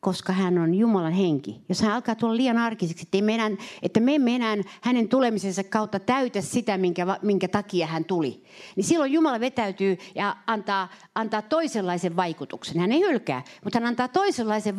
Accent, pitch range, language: native, 160-220 Hz, Finnish